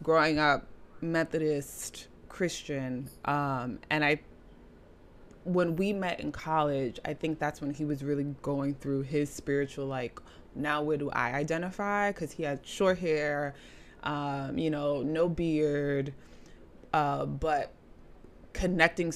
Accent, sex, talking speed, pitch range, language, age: American, female, 130 wpm, 140-165 Hz, English, 20-39